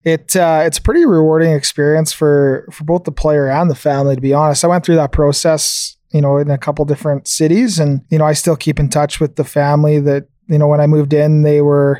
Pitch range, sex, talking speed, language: 145-160 Hz, male, 250 wpm, English